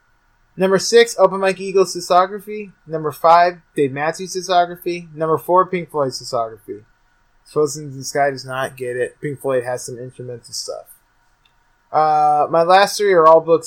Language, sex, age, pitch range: English, male, 20-39, 115-175 Hz